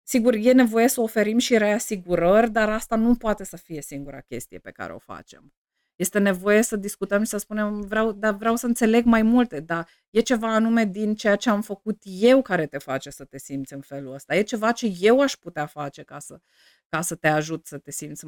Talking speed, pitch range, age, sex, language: 215 wpm, 155-210 Hz, 30-49, female, Romanian